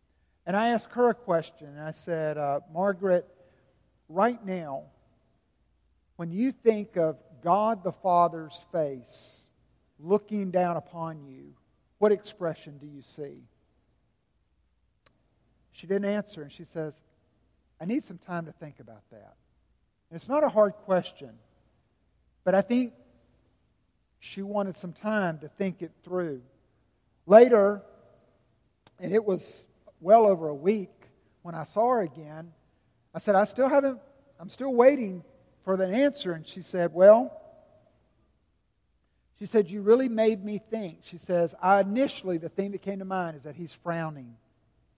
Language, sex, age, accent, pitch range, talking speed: English, male, 50-69, American, 150-205 Hz, 150 wpm